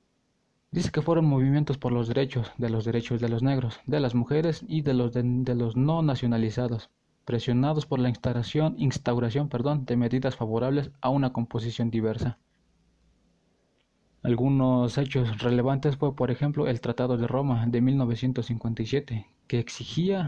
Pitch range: 120-140 Hz